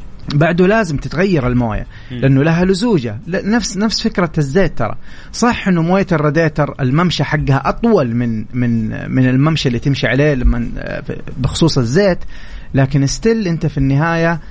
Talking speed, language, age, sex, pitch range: 145 wpm, Arabic, 30-49, male, 130-165 Hz